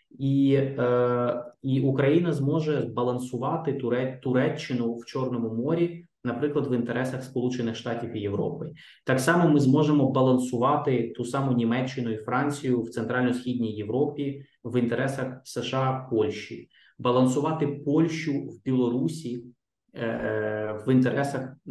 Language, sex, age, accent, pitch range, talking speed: Ukrainian, male, 20-39, native, 115-140 Hz, 110 wpm